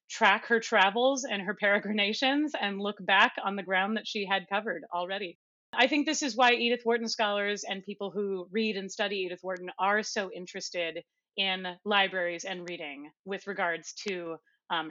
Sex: female